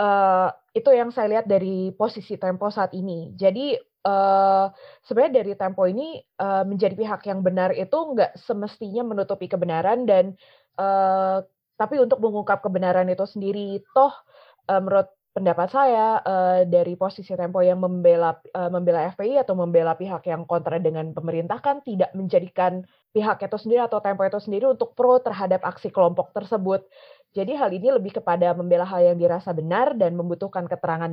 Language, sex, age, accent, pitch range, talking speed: Indonesian, female, 20-39, native, 180-220 Hz, 160 wpm